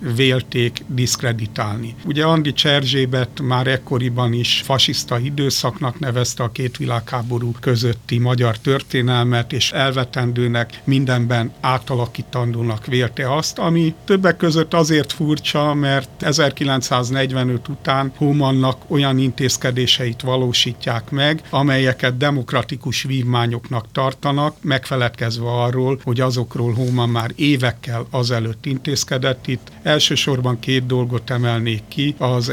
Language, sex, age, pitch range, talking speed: Hungarian, male, 60-79, 120-140 Hz, 105 wpm